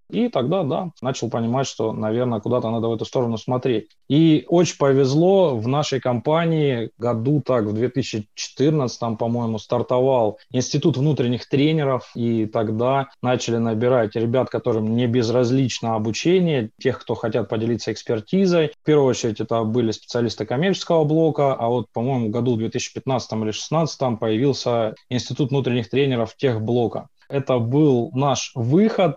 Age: 20-39